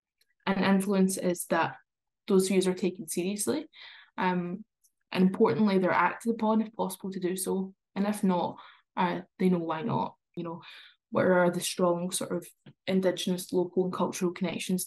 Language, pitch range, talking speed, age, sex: English, 175-200 Hz, 165 wpm, 10-29, female